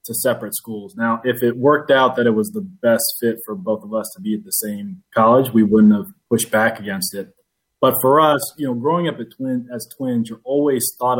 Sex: male